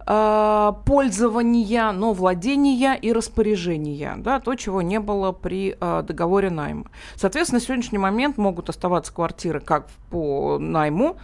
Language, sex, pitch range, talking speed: Russian, female, 190-240 Hz, 130 wpm